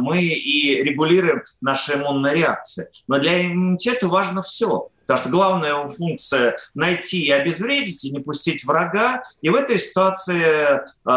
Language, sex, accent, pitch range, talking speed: Russian, male, native, 145-190 Hz, 135 wpm